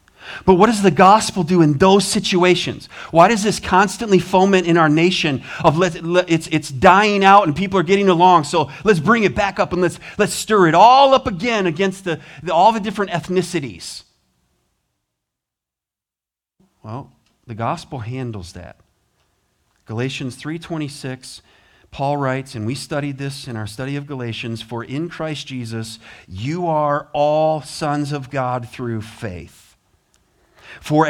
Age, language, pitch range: 40-59, English, 130-180 Hz